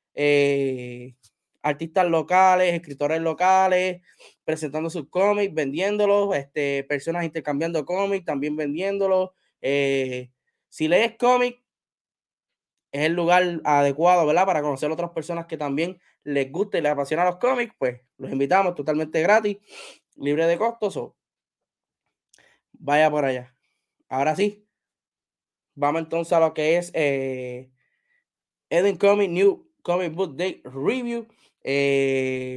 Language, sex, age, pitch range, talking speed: Spanish, male, 20-39, 145-190 Hz, 125 wpm